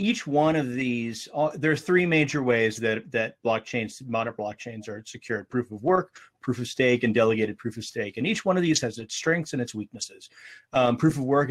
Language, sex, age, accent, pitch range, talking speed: English, male, 30-49, American, 115-140 Hz, 220 wpm